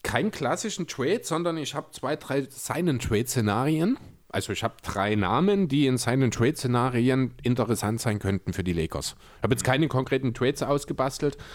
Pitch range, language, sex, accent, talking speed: 105-140 Hz, German, male, German, 165 wpm